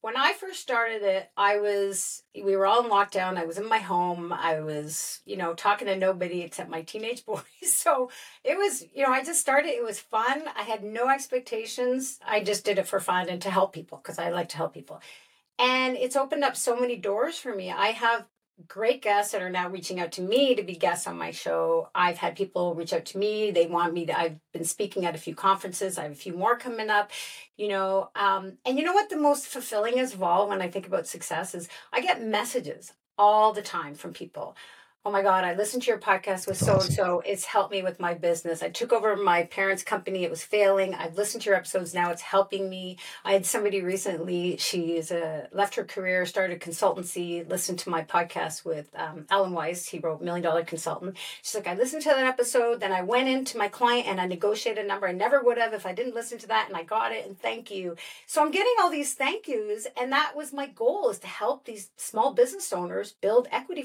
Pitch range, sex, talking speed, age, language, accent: 180-245 Hz, female, 235 wpm, 40-59, English, American